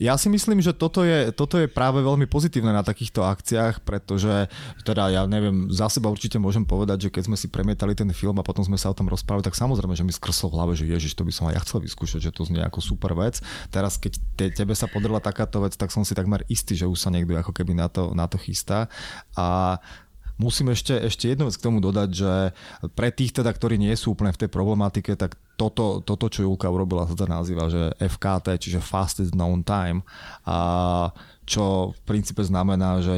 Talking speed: 225 wpm